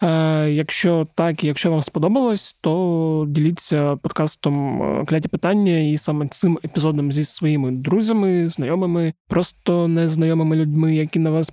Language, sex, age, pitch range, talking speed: Ukrainian, male, 20-39, 150-170 Hz, 130 wpm